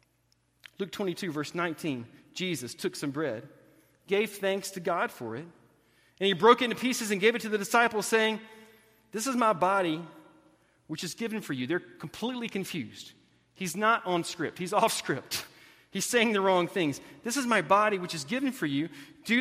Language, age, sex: English, 40-59, male